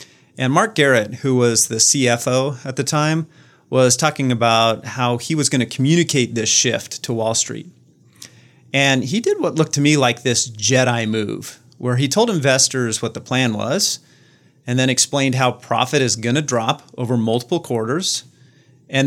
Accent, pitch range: American, 115-145 Hz